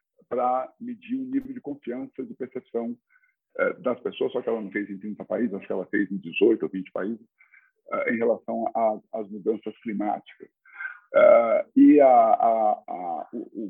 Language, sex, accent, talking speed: Portuguese, male, Brazilian, 160 wpm